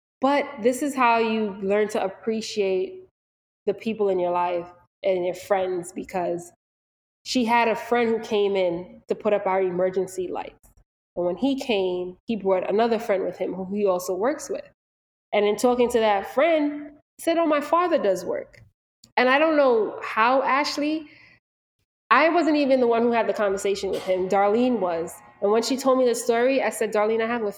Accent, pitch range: American, 195-240 Hz